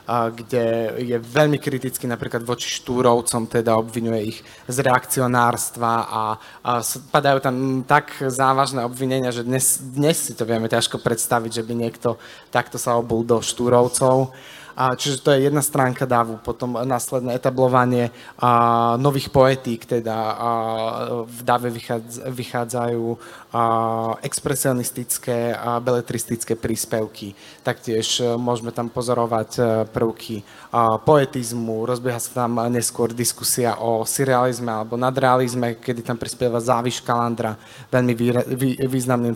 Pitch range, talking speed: 115-130 Hz, 115 wpm